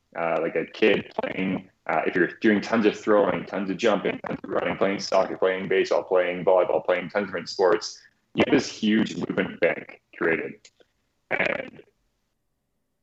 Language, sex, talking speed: English, male, 165 wpm